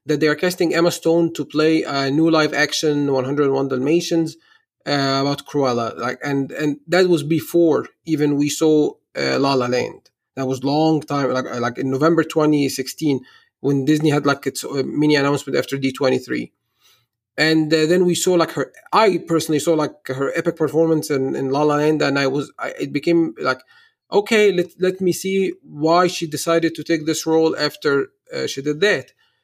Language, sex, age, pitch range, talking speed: English, male, 30-49, 140-170 Hz, 185 wpm